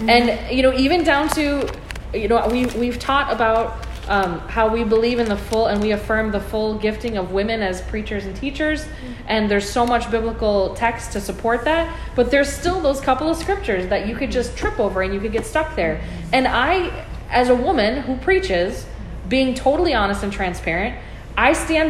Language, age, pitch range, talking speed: English, 20-39, 205-250 Hz, 200 wpm